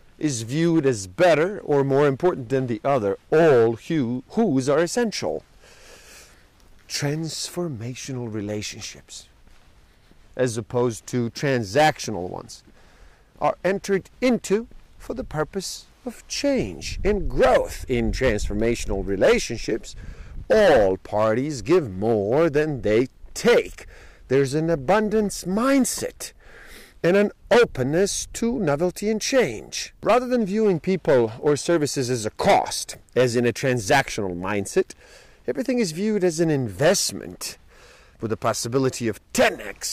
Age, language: 50-69, English